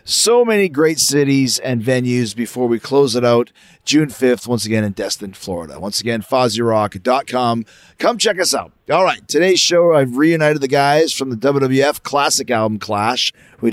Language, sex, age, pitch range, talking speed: English, male, 30-49, 120-160 Hz, 175 wpm